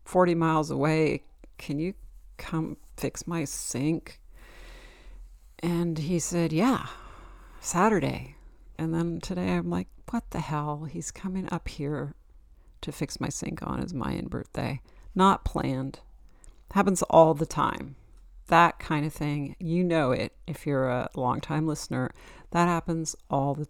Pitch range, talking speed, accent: 140-170 Hz, 140 wpm, American